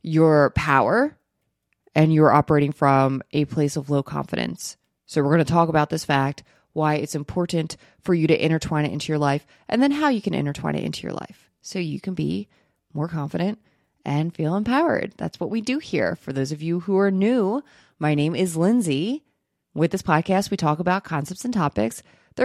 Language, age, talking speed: English, 20-39, 200 wpm